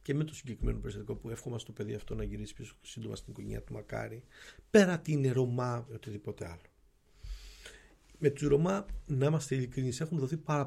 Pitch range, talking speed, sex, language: 110-145 Hz, 180 wpm, male, Greek